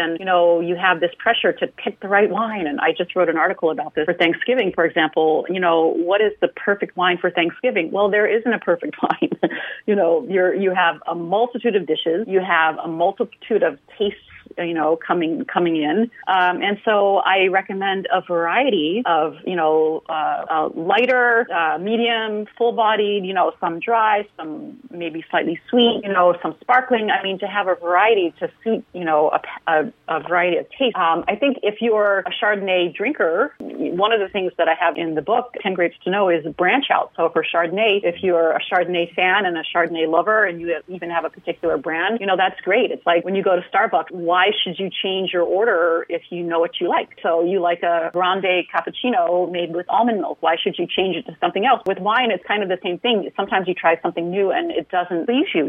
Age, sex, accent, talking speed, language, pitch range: 40-59, female, American, 225 wpm, English, 170-210 Hz